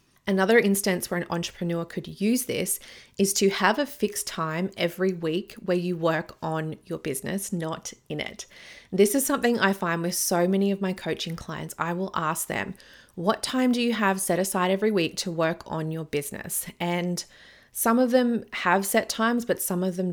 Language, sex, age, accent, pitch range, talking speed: English, female, 30-49, Australian, 165-200 Hz, 195 wpm